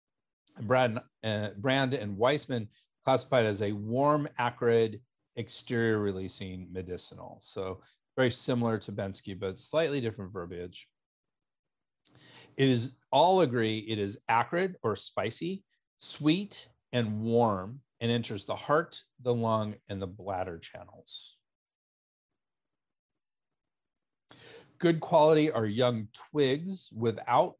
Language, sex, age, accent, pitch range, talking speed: English, male, 40-59, American, 100-130 Hz, 110 wpm